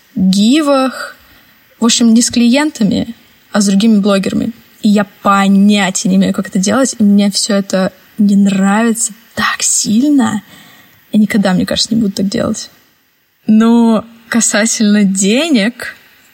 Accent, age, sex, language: native, 20-39, female, Russian